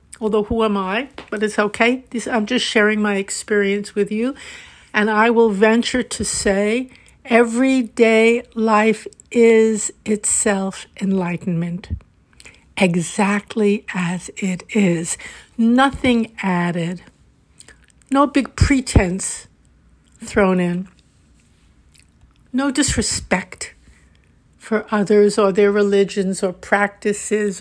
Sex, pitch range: female, 200-240 Hz